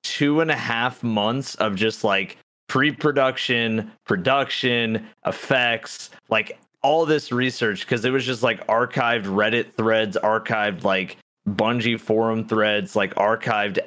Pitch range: 105-130 Hz